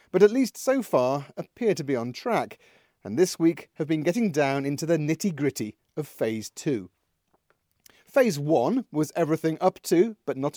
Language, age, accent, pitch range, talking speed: English, 40-59, British, 135-190 Hz, 175 wpm